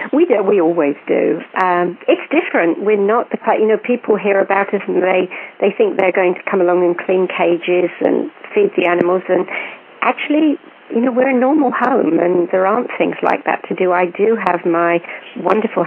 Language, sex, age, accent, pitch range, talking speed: English, female, 50-69, British, 175-210 Hz, 205 wpm